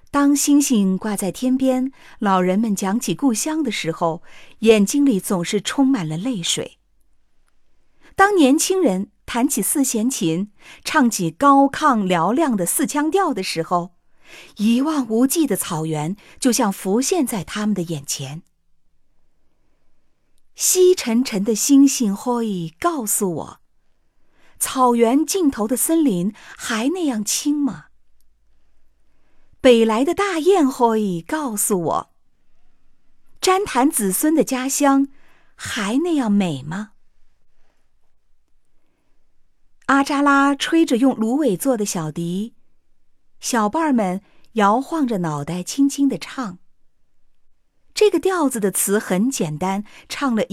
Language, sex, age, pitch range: Chinese, female, 50-69, 195-285 Hz